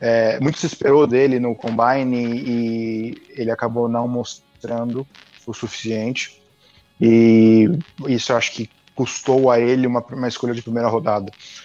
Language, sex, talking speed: English, male, 150 wpm